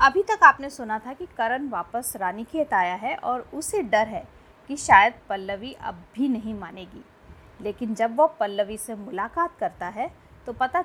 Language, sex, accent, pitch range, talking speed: Hindi, female, native, 225-330 Hz, 185 wpm